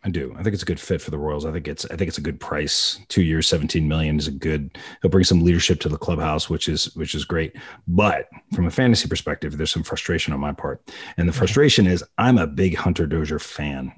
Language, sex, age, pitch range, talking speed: English, male, 30-49, 85-110 Hz, 260 wpm